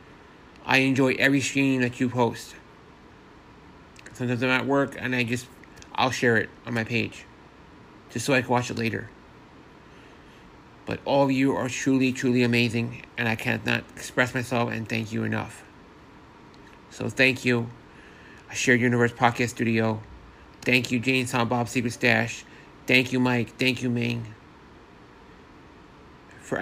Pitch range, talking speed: 110-130 Hz, 150 wpm